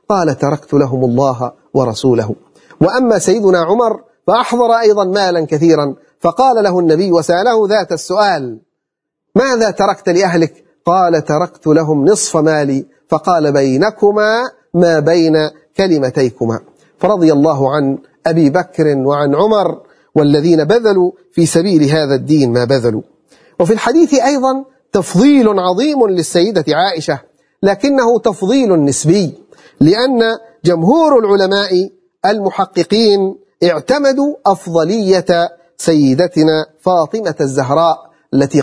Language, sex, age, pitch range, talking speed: Arabic, male, 40-59, 150-205 Hz, 105 wpm